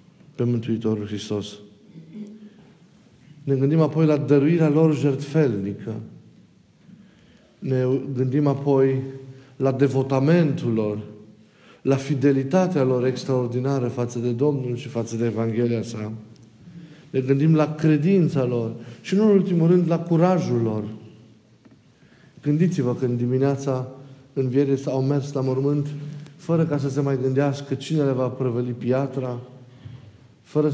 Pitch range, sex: 120-150 Hz, male